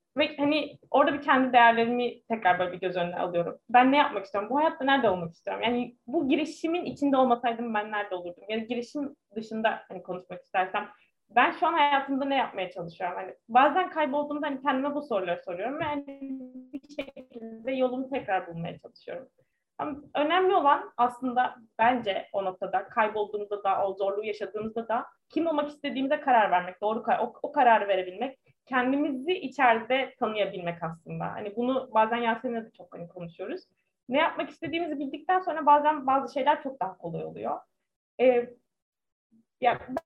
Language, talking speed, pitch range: Turkish, 160 wpm, 205-290 Hz